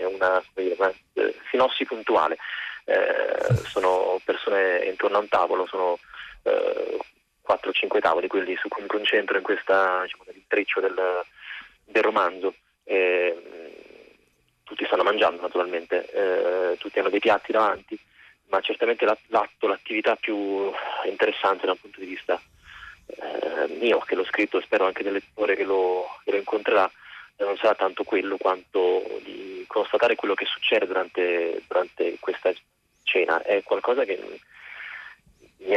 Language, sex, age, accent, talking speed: Italian, male, 30-49, native, 135 wpm